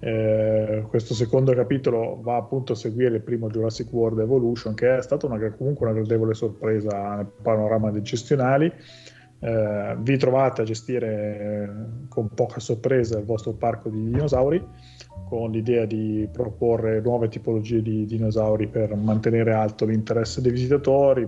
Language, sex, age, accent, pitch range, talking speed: Italian, male, 20-39, native, 110-120 Hz, 145 wpm